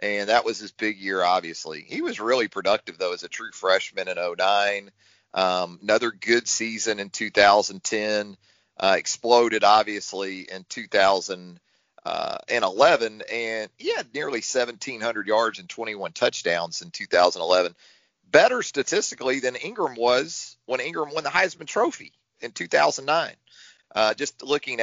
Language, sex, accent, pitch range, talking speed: English, male, American, 100-125 Hz, 140 wpm